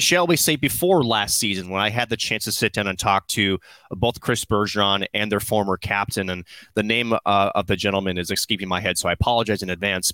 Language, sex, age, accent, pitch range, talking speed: English, male, 30-49, American, 100-120 Hz, 235 wpm